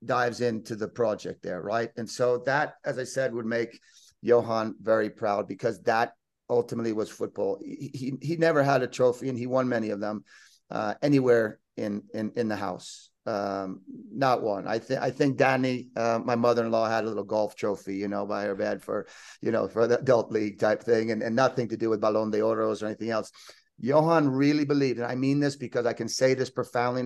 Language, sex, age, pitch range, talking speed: English, male, 40-59, 110-135 Hz, 215 wpm